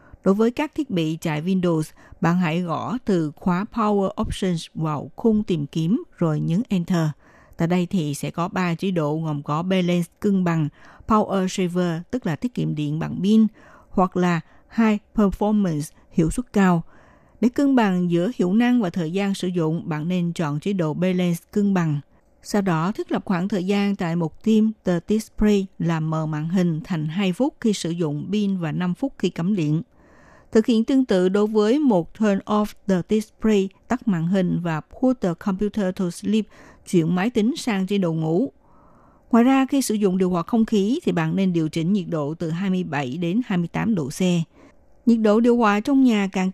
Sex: female